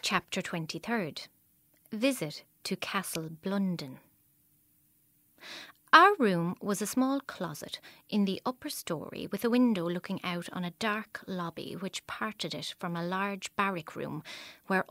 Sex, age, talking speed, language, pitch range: female, 30-49, 135 wpm, English, 175-225 Hz